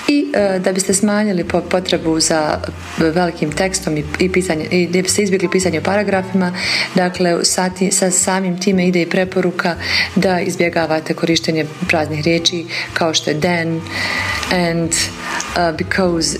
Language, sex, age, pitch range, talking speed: Croatian, female, 40-59, 170-195 Hz, 145 wpm